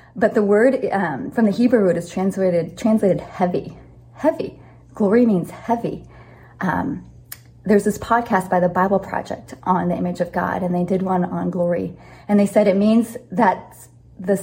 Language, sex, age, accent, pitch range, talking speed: English, female, 30-49, American, 175-210 Hz, 175 wpm